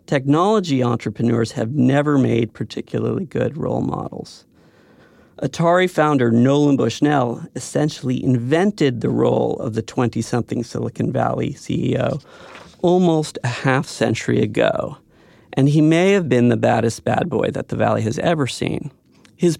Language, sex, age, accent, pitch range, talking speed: English, male, 40-59, American, 120-160 Hz, 135 wpm